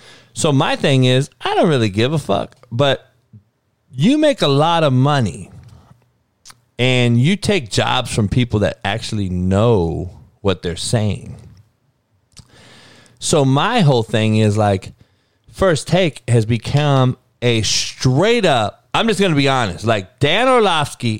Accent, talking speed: American, 145 wpm